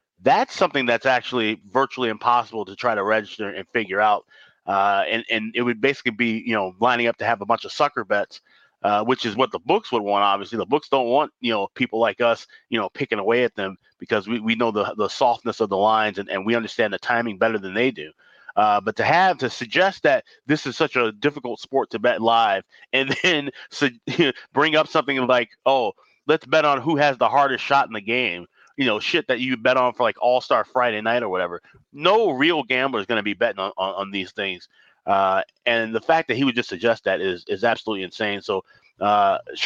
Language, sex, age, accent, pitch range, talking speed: English, male, 30-49, American, 110-130 Hz, 235 wpm